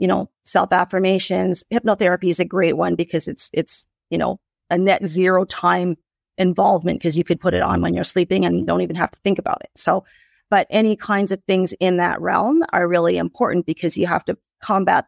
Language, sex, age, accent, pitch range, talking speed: English, female, 40-59, American, 170-200 Hz, 210 wpm